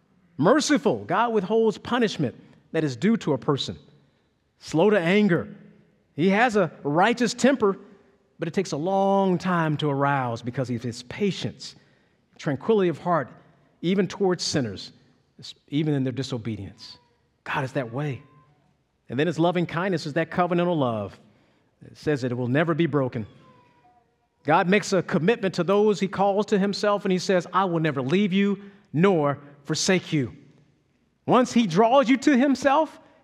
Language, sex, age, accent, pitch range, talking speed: English, male, 50-69, American, 140-205 Hz, 160 wpm